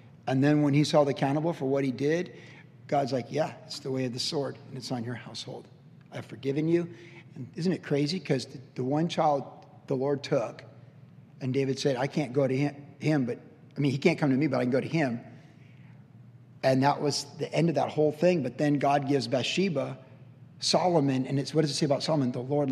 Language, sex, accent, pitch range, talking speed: English, male, American, 135-170 Hz, 225 wpm